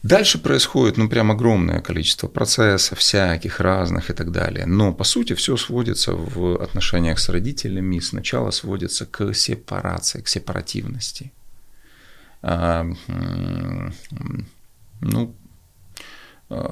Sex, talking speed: male, 105 wpm